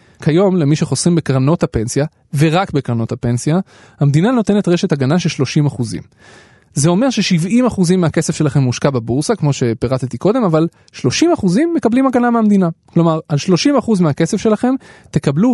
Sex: male